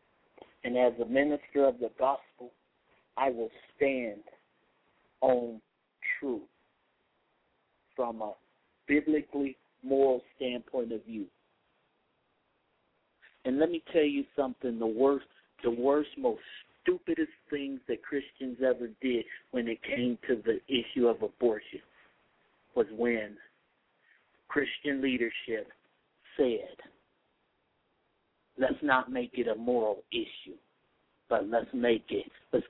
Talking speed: 110 wpm